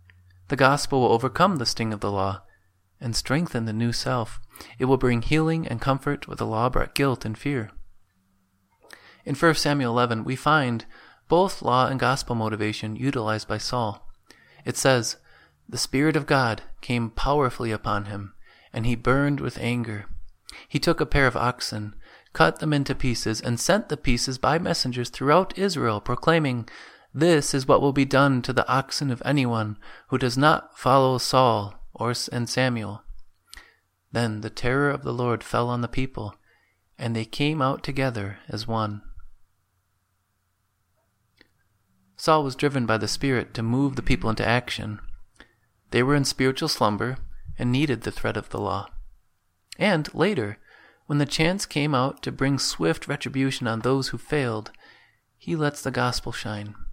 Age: 30-49